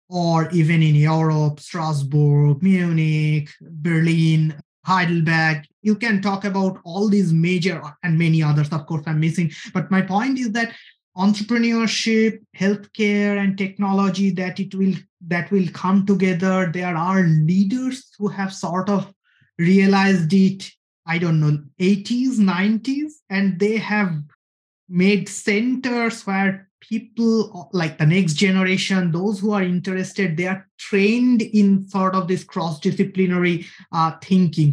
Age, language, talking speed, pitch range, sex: 20-39, English, 130 wpm, 165-200 Hz, male